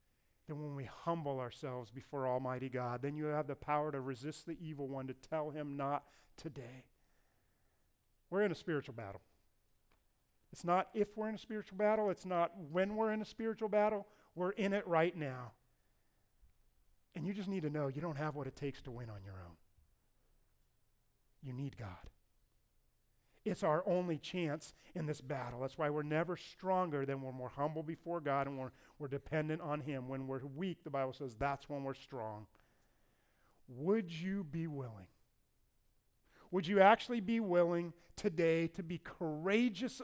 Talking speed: 175 wpm